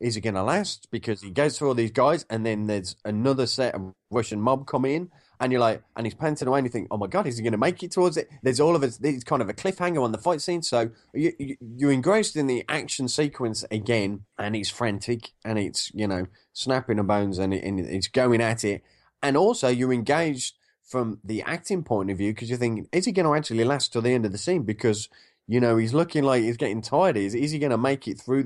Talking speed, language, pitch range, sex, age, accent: 260 wpm, English, 95-130 Hz, male, 20-39, British